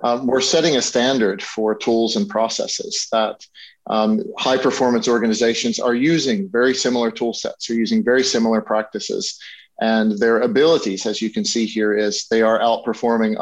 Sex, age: male, 40-59